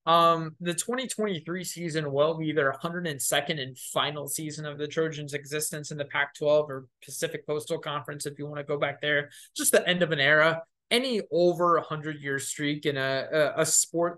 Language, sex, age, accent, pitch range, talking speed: English, male, 20-39, American, 145-170 Hz, 195 wpm